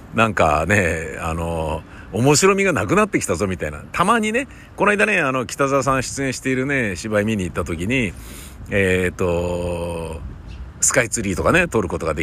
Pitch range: 85-125 Hz